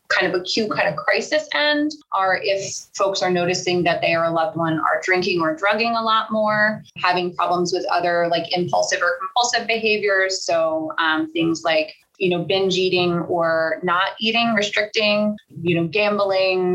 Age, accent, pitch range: 20-39, American, 170-210 Hz